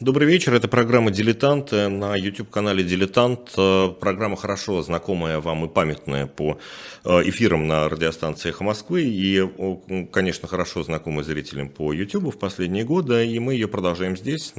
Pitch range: 90-125 Hz